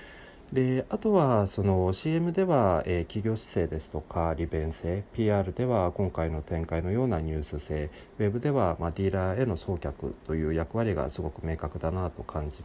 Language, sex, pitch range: Japanese, male, 80-110 Hz